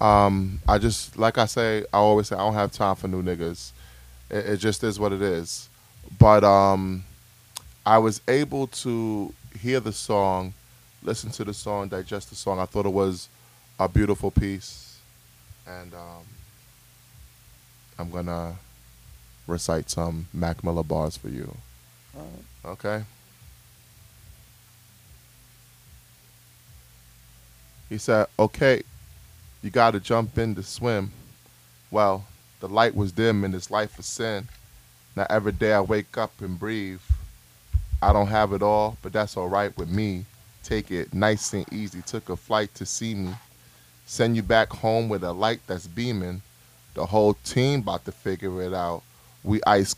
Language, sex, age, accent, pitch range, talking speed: English, male, 20-39, American, 90-110 Hz, 150 wpm